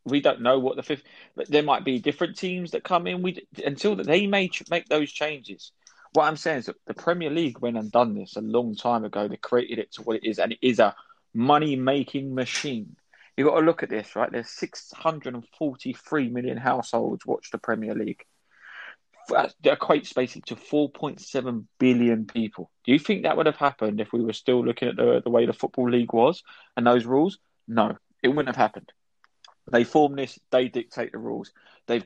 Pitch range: 120-150 Hz